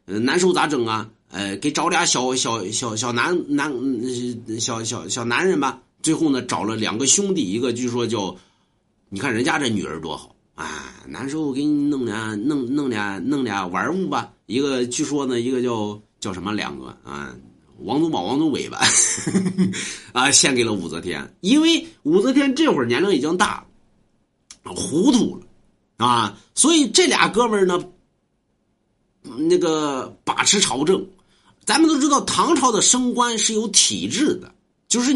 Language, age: Chinese, 50-69